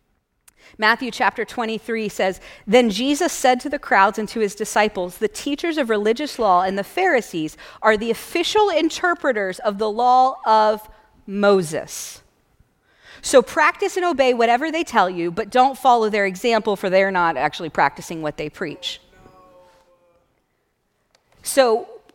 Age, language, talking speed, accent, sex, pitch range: 40-59, English, 145 wpm, American, female, 205-270 Hz